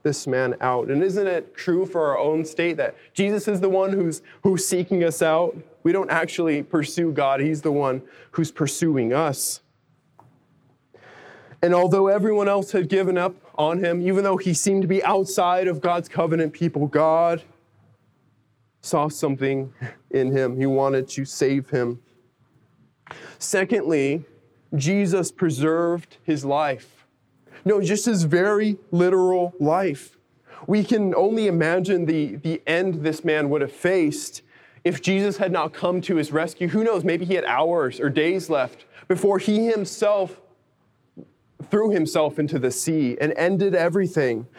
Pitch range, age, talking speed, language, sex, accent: 150-190 Hz, 20-39, 150 wpm, English, male, American